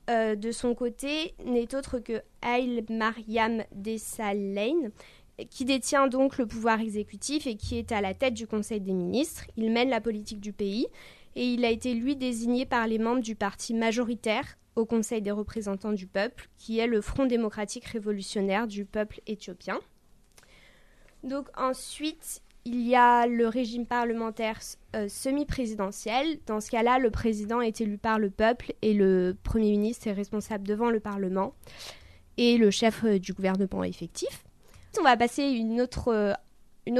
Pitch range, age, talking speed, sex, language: 210-250 Hz, 20-39, 160 wpm, female, French